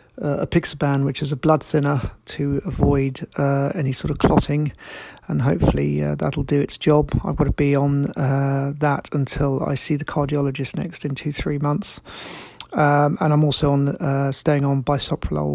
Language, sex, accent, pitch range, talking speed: English, male, British, 140-150 Hz, 185 wpm